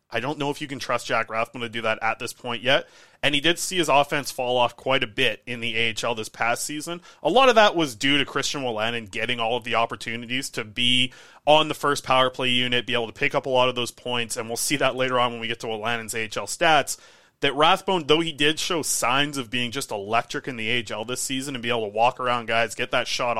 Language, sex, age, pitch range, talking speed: English, male, 30-49, 115-145 Hz, 265 wpm